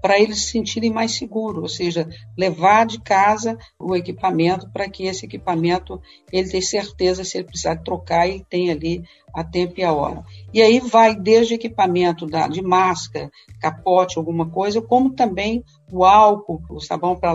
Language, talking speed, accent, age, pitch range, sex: English, 170 wpm, Brazilian, 50-69, 165-220 Hz, female